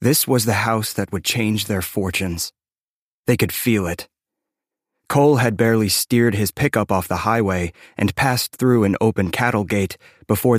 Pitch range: 95-115 Hz